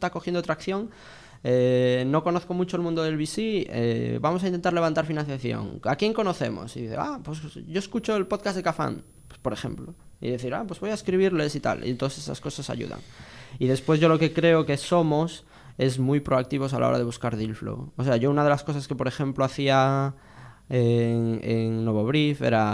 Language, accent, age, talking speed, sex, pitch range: Spanish, Spanish, 20-39, 205 wpm, male, 115-150 Hz